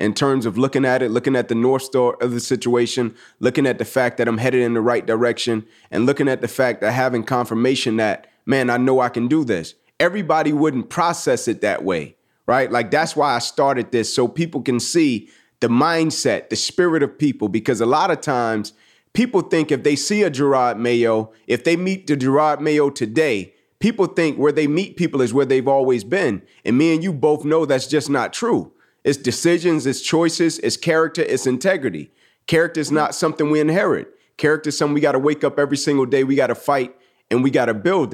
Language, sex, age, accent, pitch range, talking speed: English, male, 30-49, American, 125-155 Hz, 220 wpm